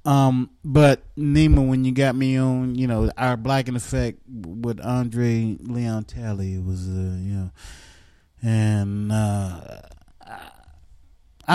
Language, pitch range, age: English, 105-135 Hz, 30-49